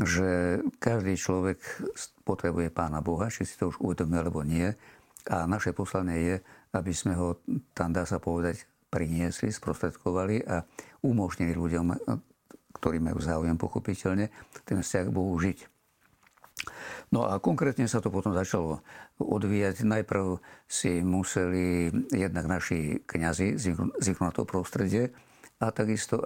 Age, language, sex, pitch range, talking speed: 50-69, Slovak, male, 85-105 Hz, 130 wpm